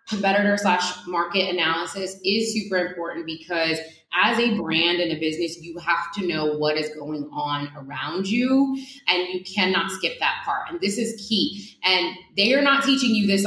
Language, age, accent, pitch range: English, 20-39, American, 175-230 Hz